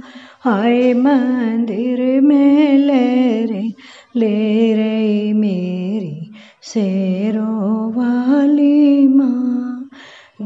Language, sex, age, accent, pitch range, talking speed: Hindi, female, 30-49, native, 225-285 Hz, 65 wpm